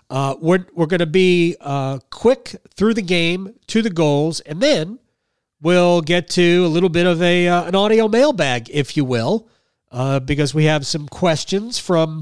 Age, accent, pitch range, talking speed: 40-59, American, 145-185 Hz, 185 wpm